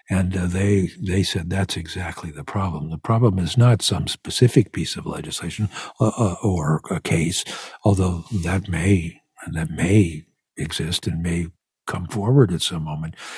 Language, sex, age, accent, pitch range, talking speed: English, male, 60-79, American, 85-105 Hz, 160 wpm